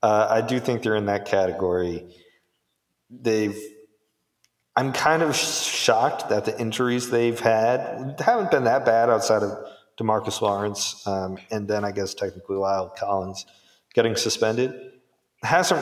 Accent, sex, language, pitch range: American, male, English, 100-125 Hz